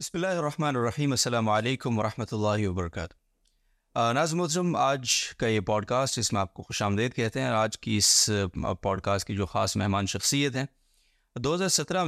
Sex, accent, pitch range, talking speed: male, Indian, 100-125 Hz, 145 wpm